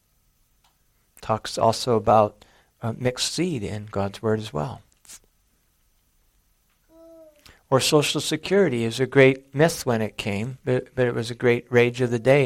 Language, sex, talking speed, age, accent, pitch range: English, male, 150 wpm, 50-69, American, 120-155 Hz